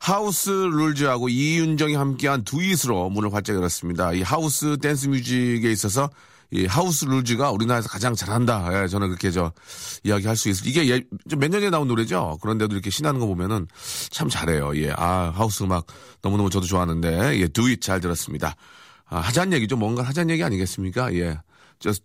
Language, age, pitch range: Korean, 40-59, 105-160 Hz